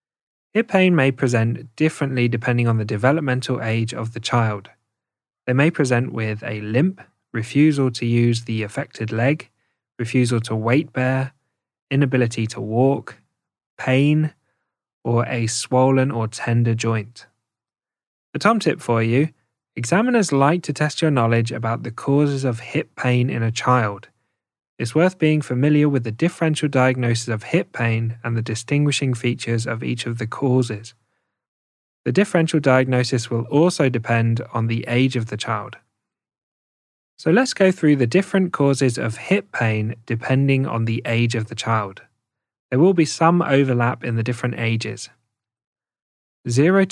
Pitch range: 115-140 Hz